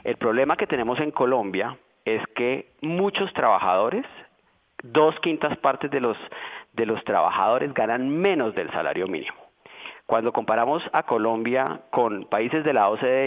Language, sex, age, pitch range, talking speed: Spanish, male, 30-49, 120-155 Hz, 140 wpm